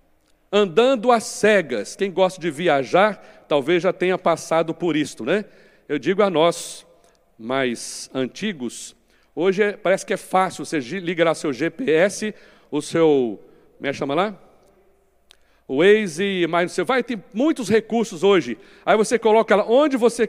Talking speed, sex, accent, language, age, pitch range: 155 wpm, male, Brazilian, Portuguese, 60-79, 170-240 Hz